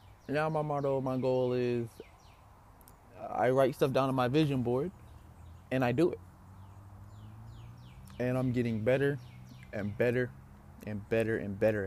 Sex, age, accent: male, 20-39, American